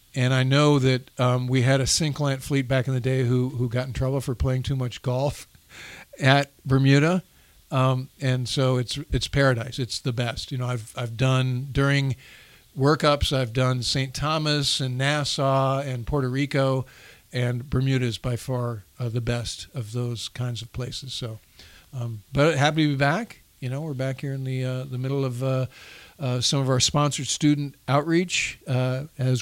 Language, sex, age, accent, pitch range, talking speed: English, male, 50-69, American, 125-140 Hz, 190 wpm